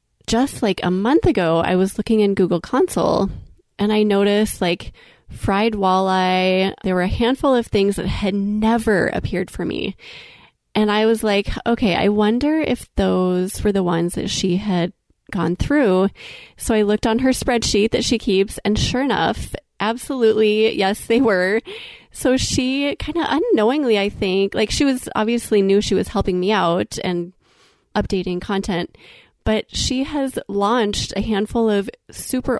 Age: 20-39